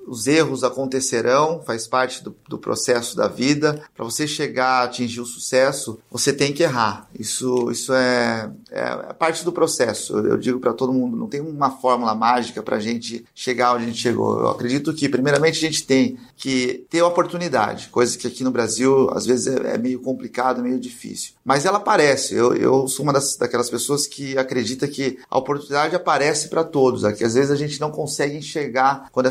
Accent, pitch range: Brazilian, 125-155 Hz